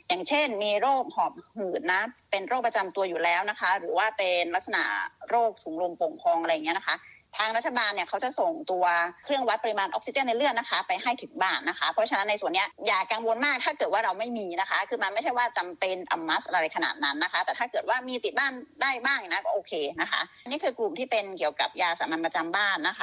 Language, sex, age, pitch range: Thai, female, 30-49, 195-275 Hz